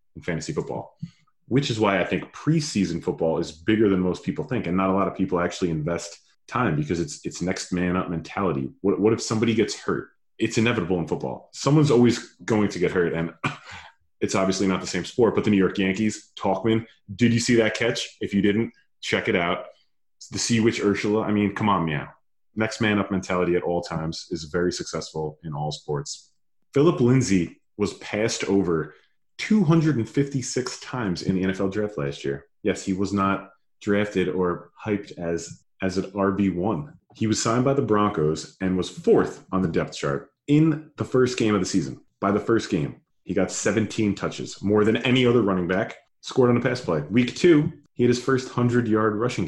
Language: English